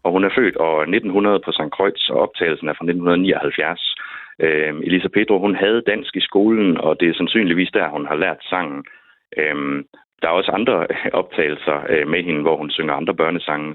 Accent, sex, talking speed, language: native, male, 190 wpm, Danish